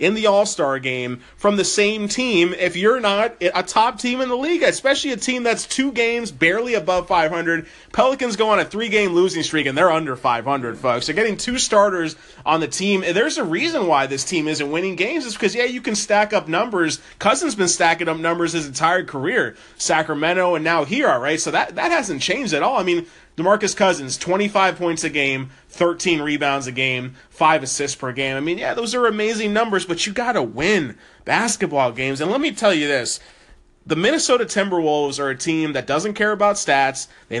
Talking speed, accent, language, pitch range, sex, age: 215 wpm, American, English, 145-205 Hz, male, 30-49